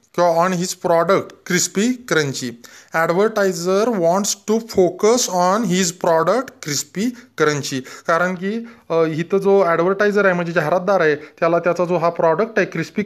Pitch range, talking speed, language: 165-210 Hz, 140 wpm, Marathi